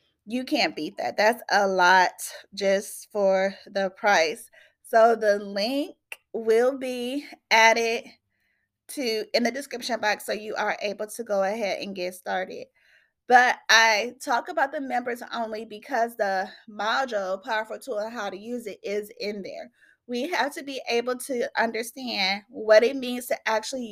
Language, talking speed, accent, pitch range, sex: English, 160 wpm, American, 205-245 Hz, female